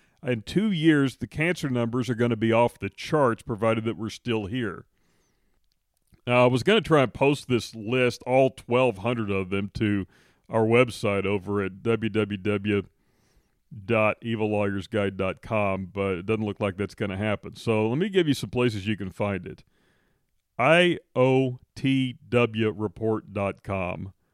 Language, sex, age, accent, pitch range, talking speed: English, male, 40-59, American, 100-120 Hz, 145 wpm